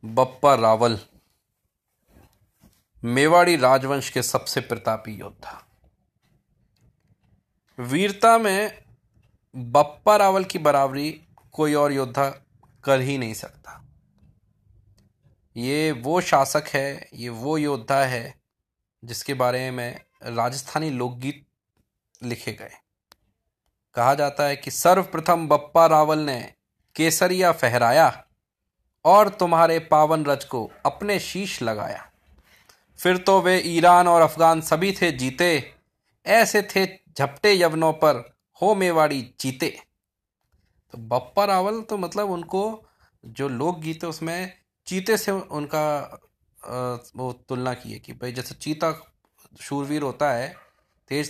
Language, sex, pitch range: Hindi, male, 125-170 Hz